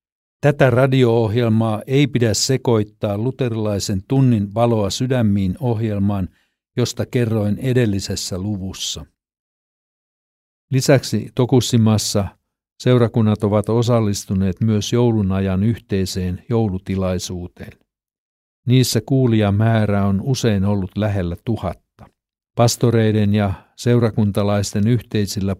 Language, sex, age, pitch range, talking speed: Finnish, male, 60-79, 95-120 Hz, 80 wpm